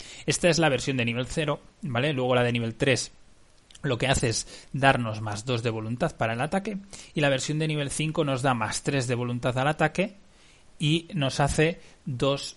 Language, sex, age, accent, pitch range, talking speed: Spanish, male, 20-39, Spanish, 115-145 Hz, 205 wpm